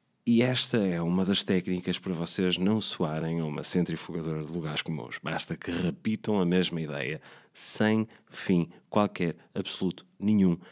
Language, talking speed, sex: Portuguese, 150 wpm, male